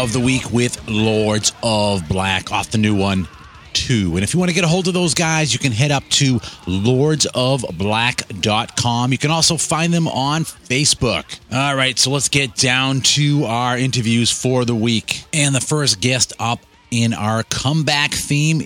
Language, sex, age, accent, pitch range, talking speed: English, male, 30-49, American, 105-135 Hz, 185 wpm